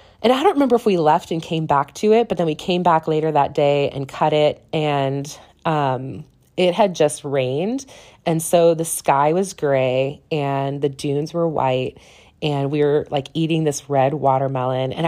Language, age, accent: English, 20-39, American